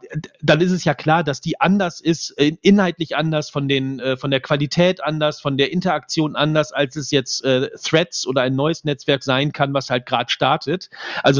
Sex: male